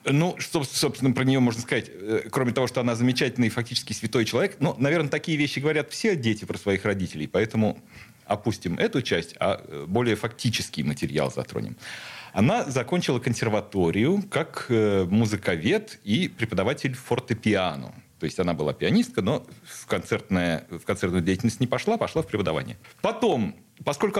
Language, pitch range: Russian, 105-150 Hz